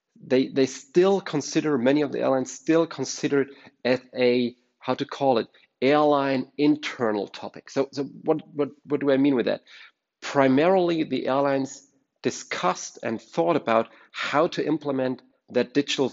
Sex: male